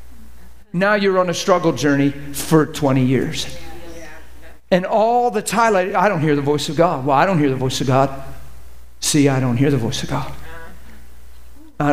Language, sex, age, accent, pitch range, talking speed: English, male, 50-69, American, 155-195 Hz, 185 wpm